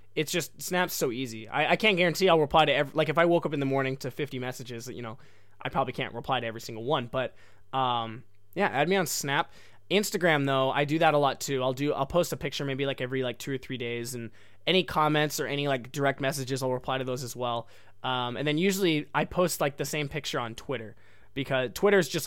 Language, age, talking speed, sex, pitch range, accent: English, 20-39, 255 wpm, male, 125-160 Hz, American